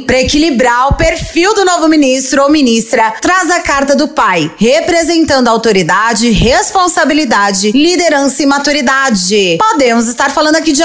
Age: 30-49